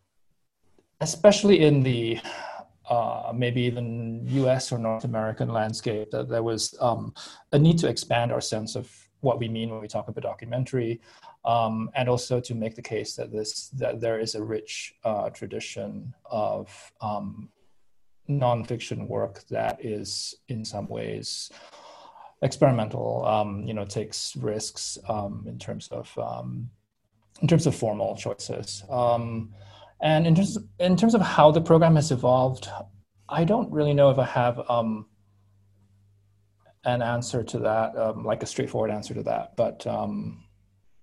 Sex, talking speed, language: male, 155 wpm, English